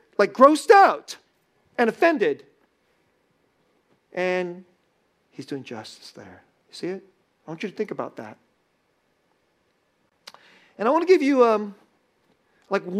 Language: English